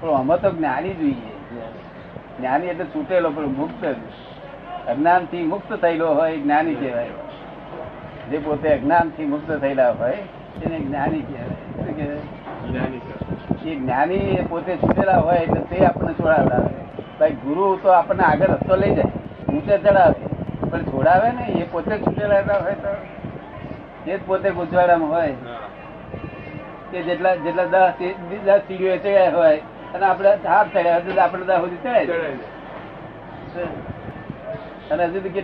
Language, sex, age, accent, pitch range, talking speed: Gujarati, male, 60-79, native, 145-185 Hz, 85 wpm